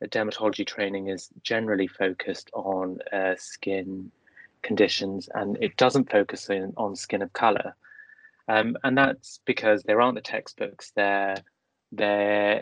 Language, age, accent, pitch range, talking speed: English, 20-39, British, 100-120 Hz, 125 wpm